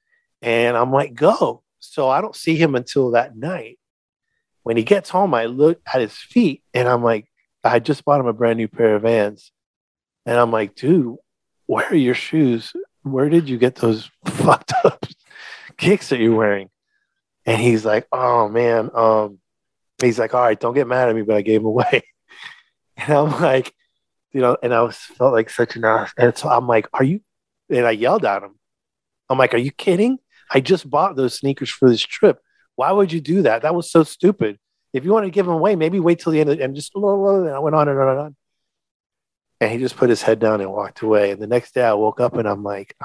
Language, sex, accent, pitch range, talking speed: English, male, American, 110-145 Hz, 225 wpm